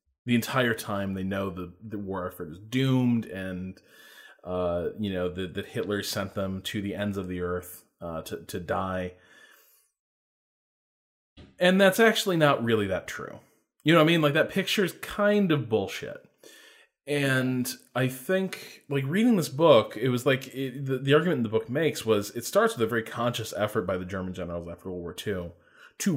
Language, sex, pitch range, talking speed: English, male, 90-125 Hz, 185 wpm